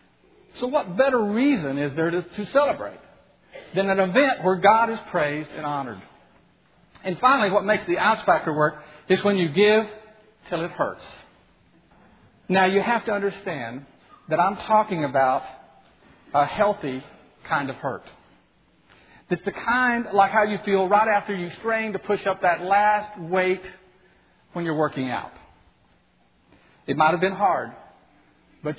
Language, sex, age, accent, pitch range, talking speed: English, male, 50-69, American, 150-205 Hz, 150 wpm